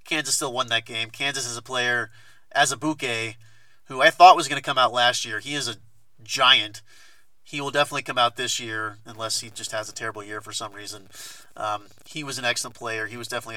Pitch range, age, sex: 110-135 Hz, 30-49, male